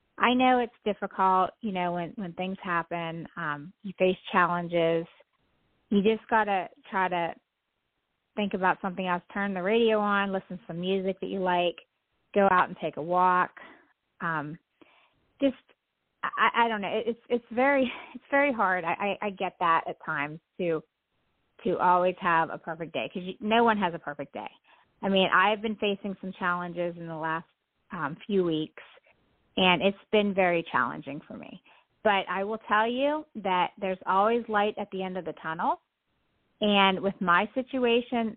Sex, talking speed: female, 175 wpm